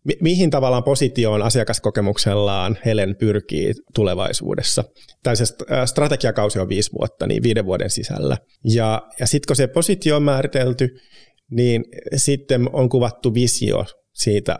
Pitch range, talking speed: 105-130 Hz, 125 wpm